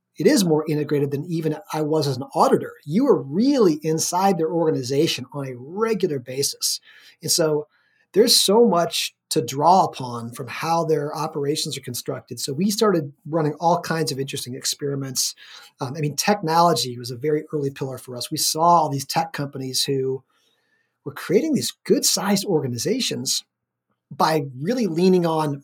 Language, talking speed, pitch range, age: English, 165 wpm, 140-180 Hz, 30-49